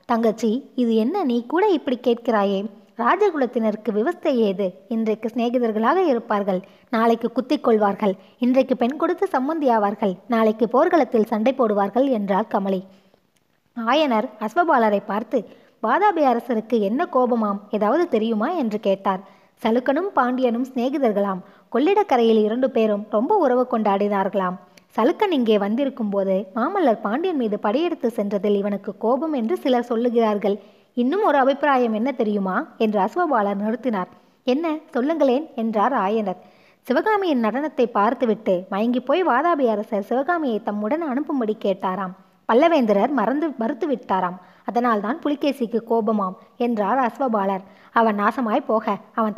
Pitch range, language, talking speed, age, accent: 210-260 Hz, Tamil, 115 wpm, 20-39, native